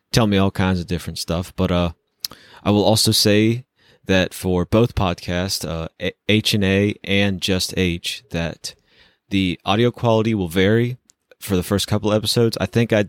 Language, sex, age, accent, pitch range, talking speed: English, male, 30-49, American, 90-105 Hz, 175 wpm